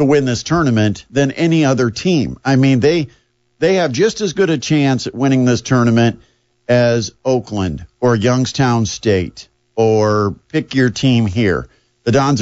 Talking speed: 165 wpm